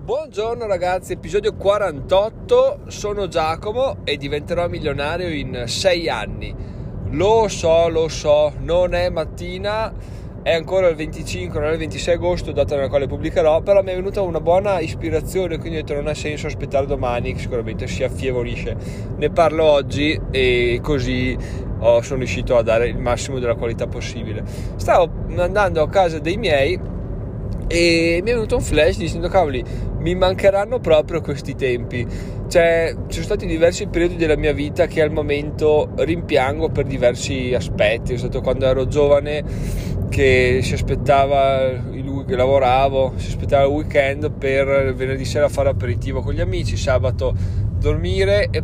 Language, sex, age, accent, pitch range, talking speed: Italian, male, 20-39, native, 105-155 Hz, 155 wpm